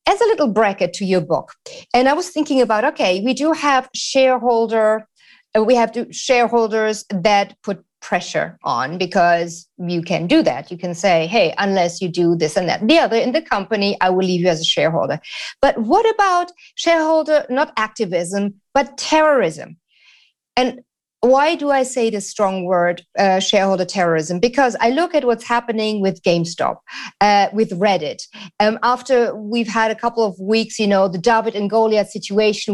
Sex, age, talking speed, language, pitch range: female, 40-59, 180 wpm, English, 195-260 Hz